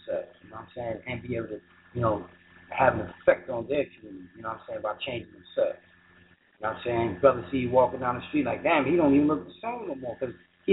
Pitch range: 90-145 Hz